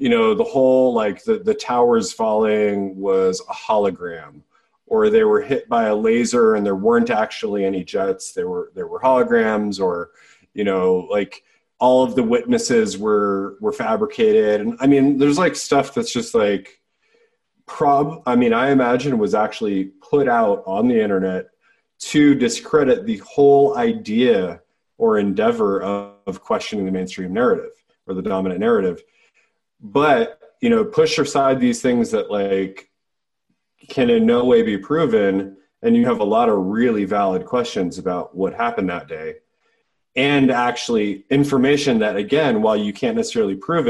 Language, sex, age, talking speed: English, male, 30-49, 160 wpm